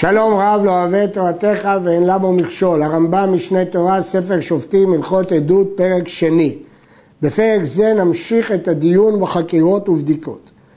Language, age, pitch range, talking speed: Hebrew, 50-69, 170-215 Hz, 135 wpm